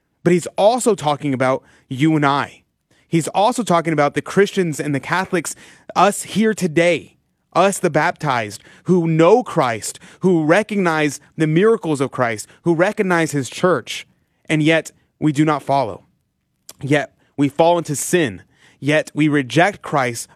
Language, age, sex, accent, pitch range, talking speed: English, 30-49, male, American, 140-175 Hz, 150 wpm